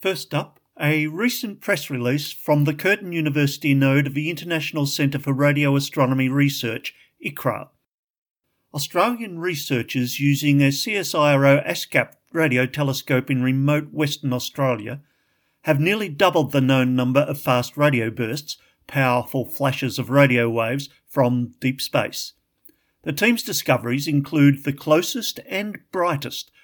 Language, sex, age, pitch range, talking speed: English, male, 50-69, 135-155 Hz, 130 wpm